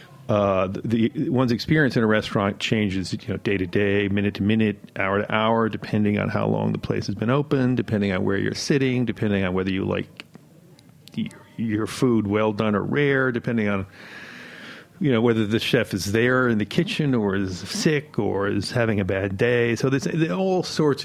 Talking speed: 195 wpm